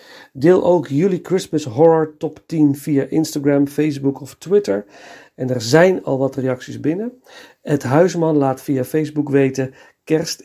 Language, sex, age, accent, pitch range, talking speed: Dutch, male, 50-69, Dutch, 130-165 Hz, 150 wpm